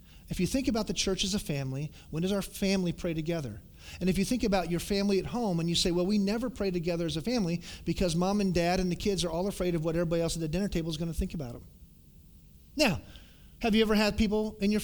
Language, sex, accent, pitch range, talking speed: English, male, American, 145-195 Hz, 270 wpm